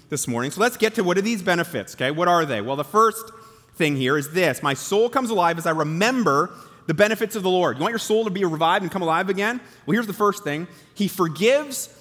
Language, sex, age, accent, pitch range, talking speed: English, male, 30-49, American, 165-225 Hz, 255 wpm